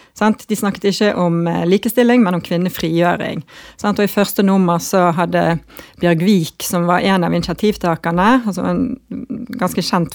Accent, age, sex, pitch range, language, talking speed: Swedish, 30-49, female, 180-220 Hz, English, 150 wpm